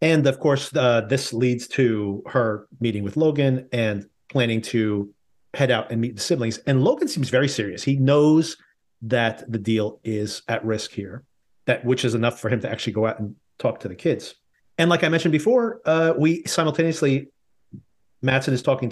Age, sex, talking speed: 40-59, male, 190 wpm